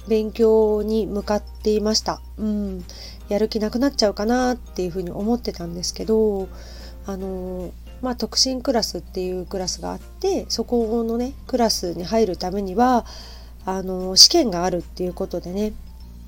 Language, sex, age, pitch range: Japanese, female, 40-59, 185-225 Hz